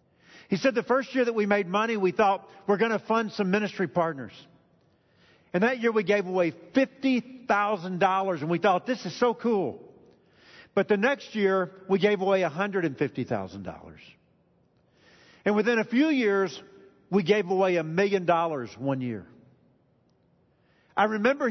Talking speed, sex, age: 155 wpm, male, 50-69